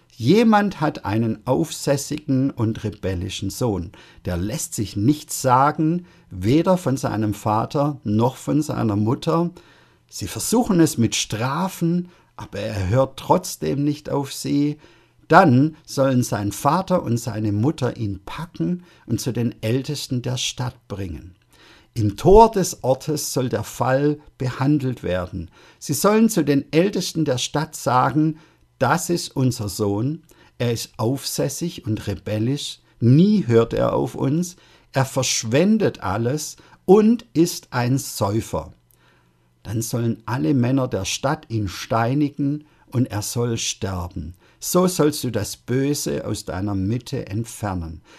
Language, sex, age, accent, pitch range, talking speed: German, male, 50-69, German, 110-150 Hz, 135 wpm